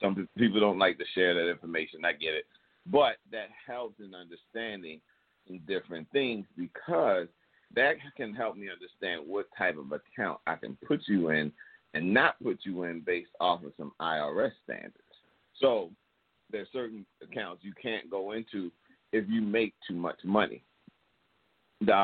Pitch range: 85-105 Hz